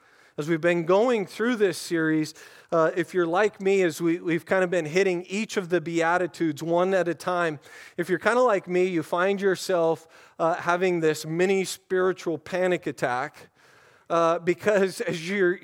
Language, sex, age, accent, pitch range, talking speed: English, male, 40-59, American, 170-205 Hz, 175 wpm